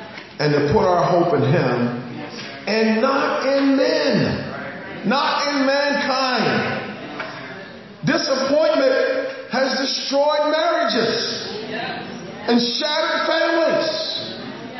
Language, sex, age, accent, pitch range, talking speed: English, male, 40-59, American, 195-275 Hz, 85 wpm